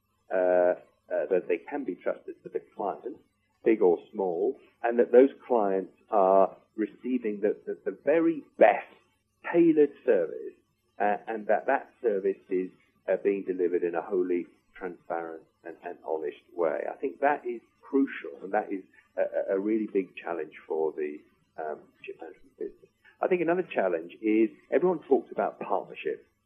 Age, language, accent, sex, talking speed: 40-59, English, British, male, 160 wpm